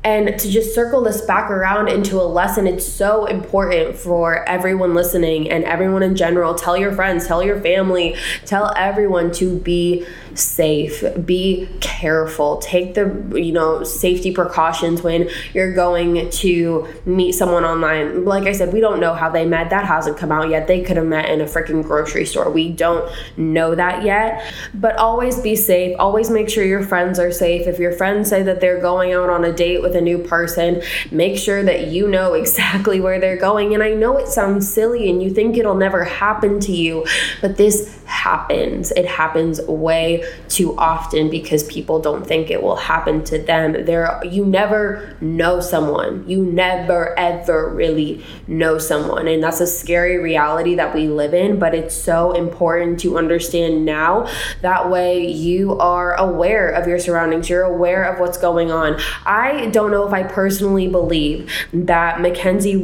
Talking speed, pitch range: 180 wpm, 165-195 Hz